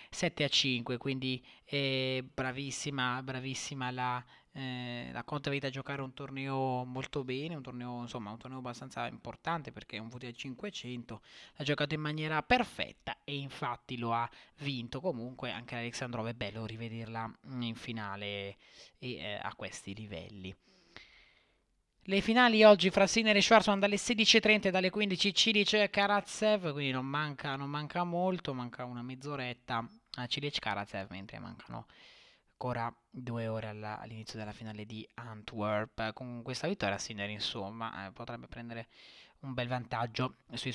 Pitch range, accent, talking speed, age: 115-140 Hz, native, 155 wpm, 20-39